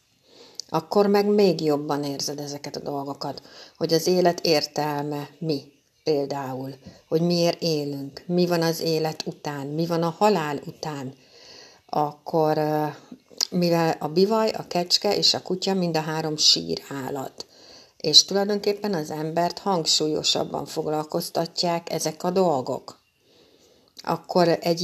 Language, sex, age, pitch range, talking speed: Hungarian, female, 60-79, 150-185 Hz, 125 wpm